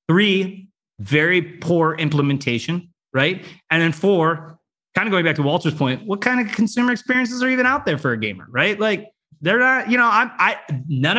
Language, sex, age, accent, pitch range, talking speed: English, male, 30-49, American, 140-185 Hz, 195 wpm